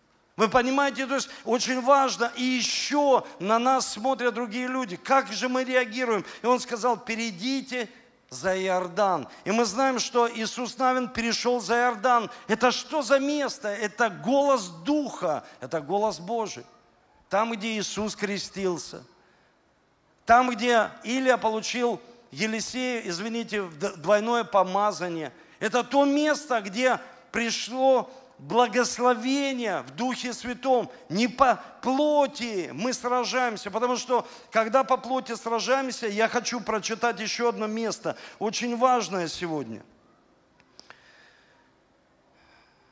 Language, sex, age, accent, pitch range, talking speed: Russian, male, 50-69, native, 200-250 Hz, 115 wpm